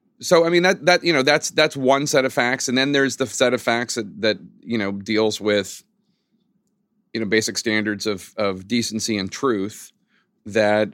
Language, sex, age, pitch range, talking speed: English, male, 30-49, 100-130 Hz, 195 wpm